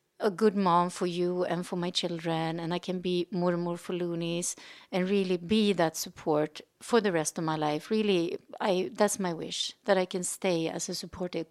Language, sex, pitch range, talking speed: English, female, 170-205 Hz, 215 wpm